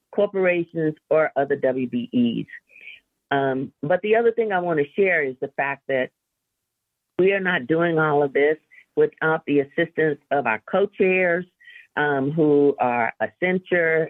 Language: English